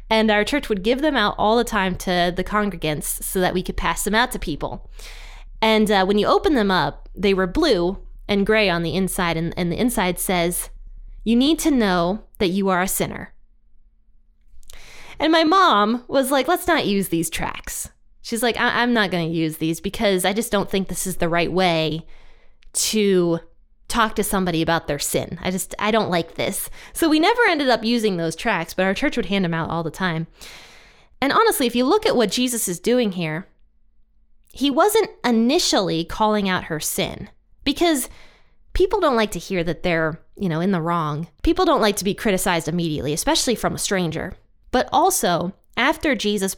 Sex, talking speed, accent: female, 200 wpm, American